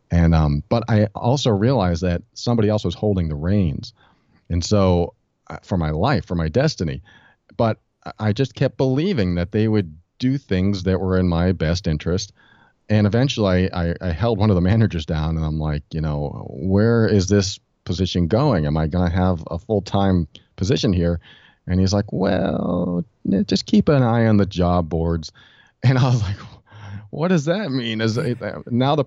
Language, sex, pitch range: English, male, 85-120 Hz